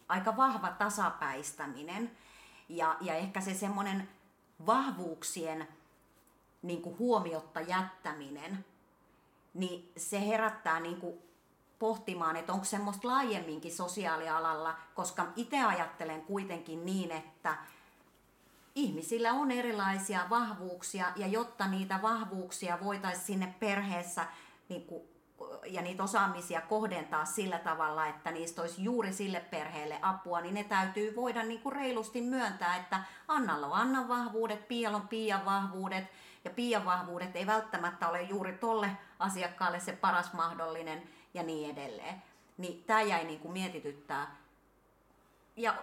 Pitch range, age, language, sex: 165-215 Hz, 30-49, Finnish, female